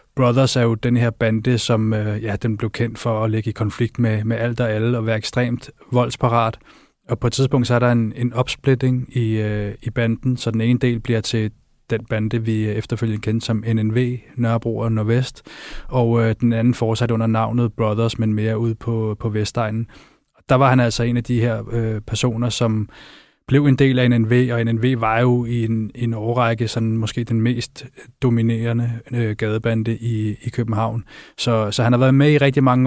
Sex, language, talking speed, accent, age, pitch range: male, Danish, 205 wpm, native, 20-39, 115-125 Hz